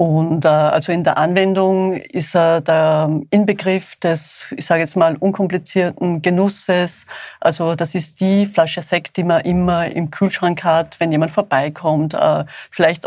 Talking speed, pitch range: 145 wpm, 155-185 Hz